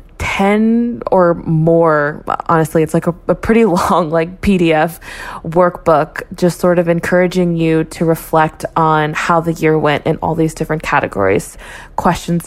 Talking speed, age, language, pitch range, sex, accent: 150 wpm, 20-39, English, 160-195 Hz, female, American